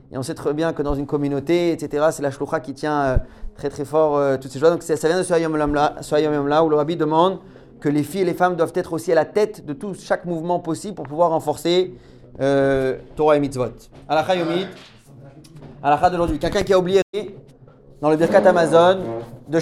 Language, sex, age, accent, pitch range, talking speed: French, male, 30-49, French, 145-175 Hz, 225 wpm